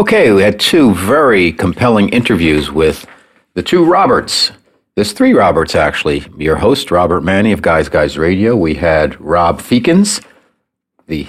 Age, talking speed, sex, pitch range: 50-69, 150 wpm, male, 85-115 Hz